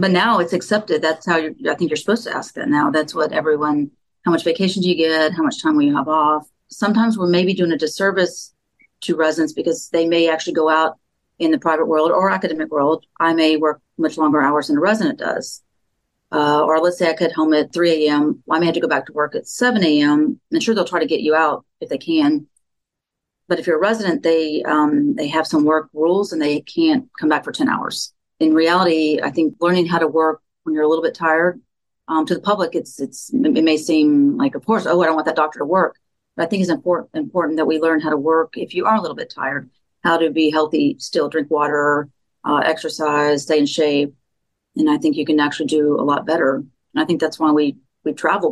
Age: 40-59